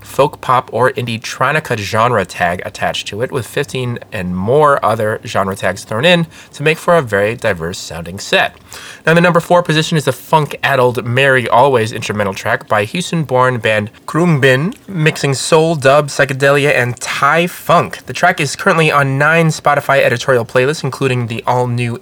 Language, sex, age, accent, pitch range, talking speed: English, male, 30-49, American, 115-155 Hz, 170 wpm